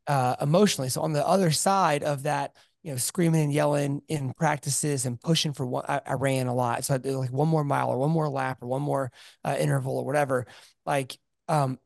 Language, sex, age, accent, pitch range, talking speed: English, male, 30-49, American, 130-165 Hz, 230 wpm